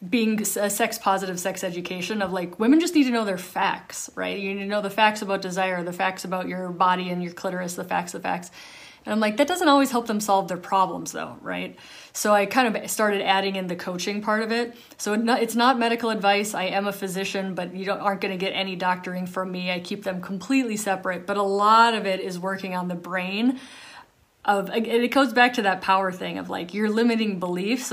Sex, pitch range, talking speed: female, 190-220 Hz, 235 wpm